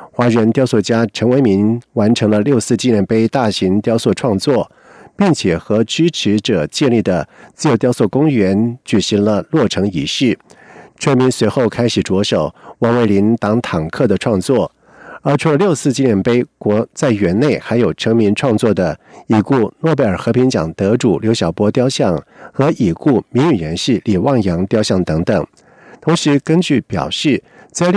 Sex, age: male, 50-69